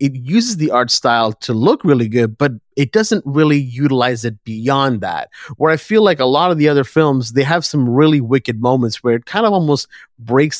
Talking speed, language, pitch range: 220 wpm, English, 120-155 Hz